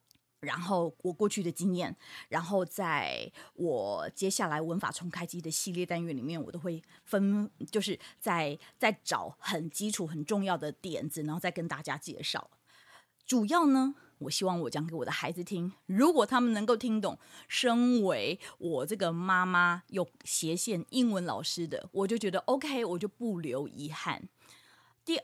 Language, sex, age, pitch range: Chinese, female, 20-39, 170-230 Hz